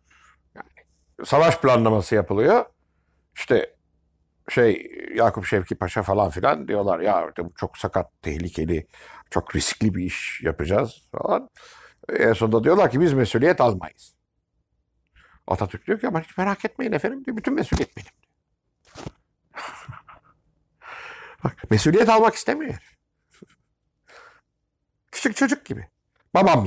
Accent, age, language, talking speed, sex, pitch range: native, 60-79, Turkish, 105 wpm, male, 110-180 Hz